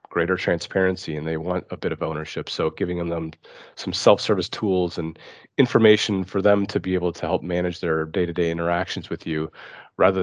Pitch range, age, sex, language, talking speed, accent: 85-100 Hz, 30-49, male, English, 180 wpm, American